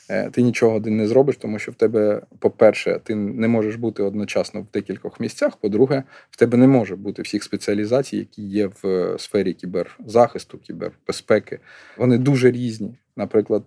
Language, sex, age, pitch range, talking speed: Ukrainian, male, 20-39, 105-120 Hz, 160 wpm